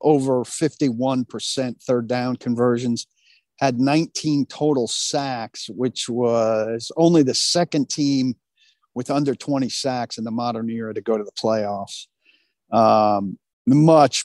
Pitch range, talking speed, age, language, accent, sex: 120-145 Hz, 125 wpm, 50-69, English, American, male